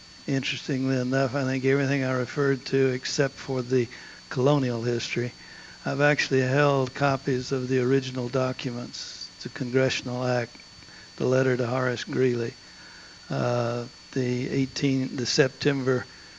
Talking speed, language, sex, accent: 120 wpm, English, male, American